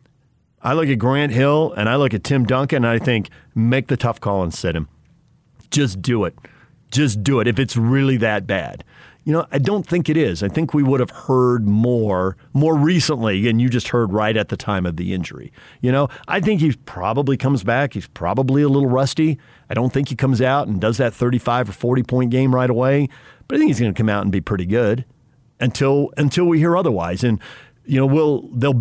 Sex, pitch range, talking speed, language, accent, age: male, 110-145 Hz, 225 wpm, English, American, 50-69